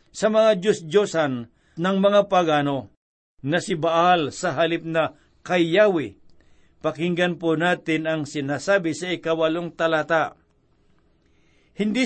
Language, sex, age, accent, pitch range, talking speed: Filipino, male, 60-79, native, 160-200 Hz, 110 wpm